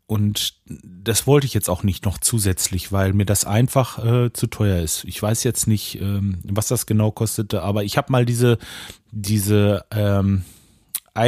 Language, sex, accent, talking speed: German, male, German, 175 wpm